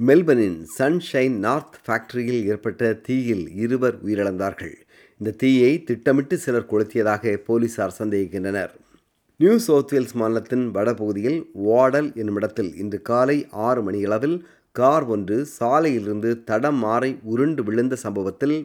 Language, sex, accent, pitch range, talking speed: Tamil, male, native, 105-140 Hz, 110 wpm